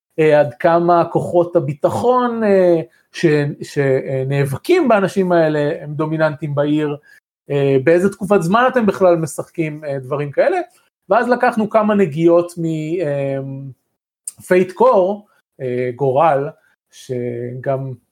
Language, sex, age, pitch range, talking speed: Hebrew, male, 30-49, 140-180 Hz, 110 wpm